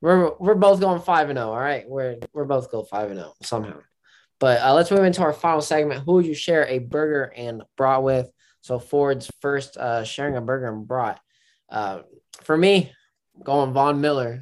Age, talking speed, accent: 20-39, 210 wpm, American